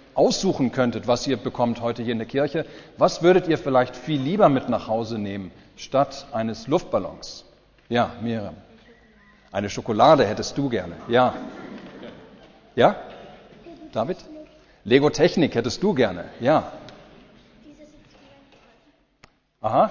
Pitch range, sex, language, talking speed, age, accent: 125-185 Hz, male, German, 120 wpm, 40-59, German